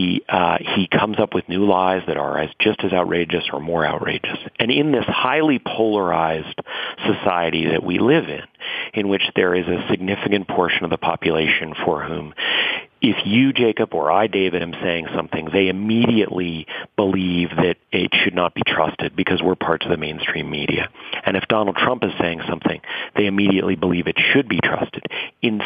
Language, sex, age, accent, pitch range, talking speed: English, male, 40-59, American, 85-105 Hz, 180 wpm